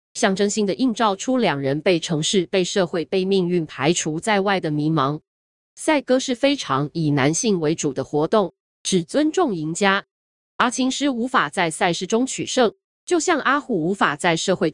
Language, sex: Chinese, female